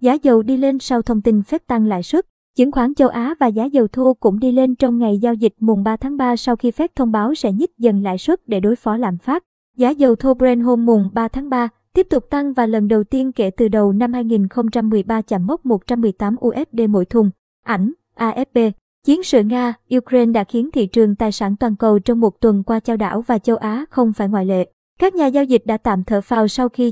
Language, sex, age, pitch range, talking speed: Vietnamese, male, 20-39, 220-260 Hz, 240 wpm